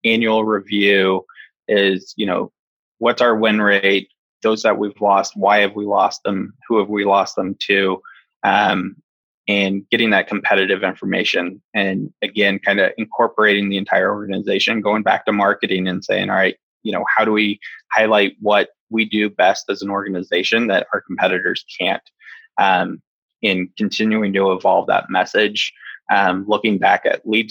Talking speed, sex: 165 wpm, male